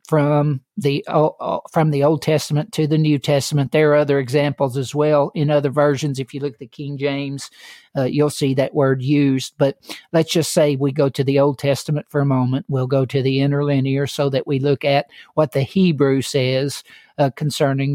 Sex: male